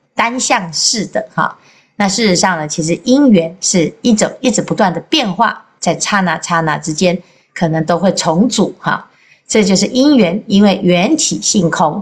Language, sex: Chinese, female